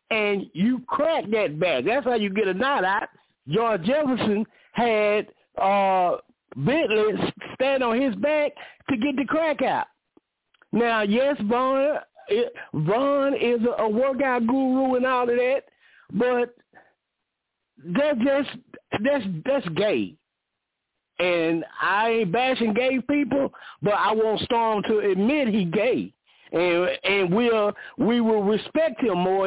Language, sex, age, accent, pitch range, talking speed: English, male, 50-69, American, 210-275 Hz, 130 wpm